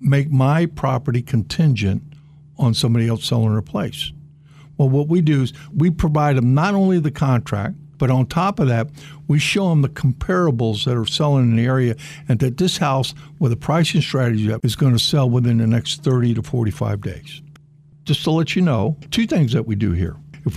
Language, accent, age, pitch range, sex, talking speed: English, American, 60-79, 125-155 Hz, male, 205 wpm